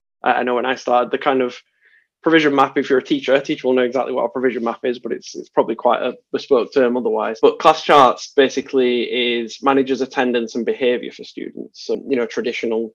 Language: English